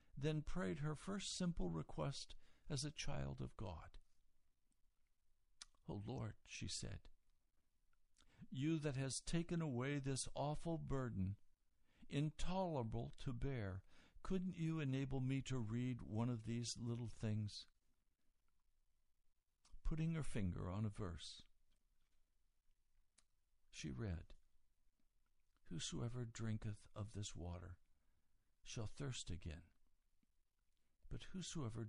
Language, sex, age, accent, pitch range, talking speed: English, male, 60-79, American, 85-125 Hz, 105 wpm